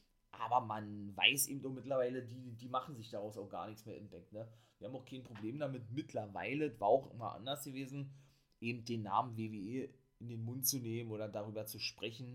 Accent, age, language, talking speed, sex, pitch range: German, 20-39, German, 210 wpm, male, 105-130 Hz